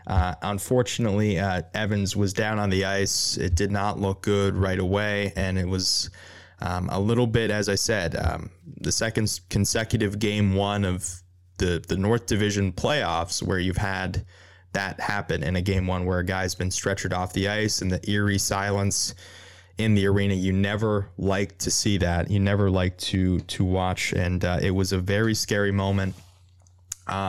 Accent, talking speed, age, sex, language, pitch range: American, 185 wpm, 20-39, male, English, 90-105 Hz